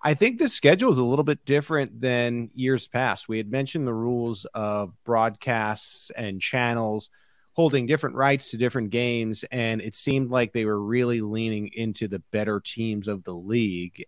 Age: 30-49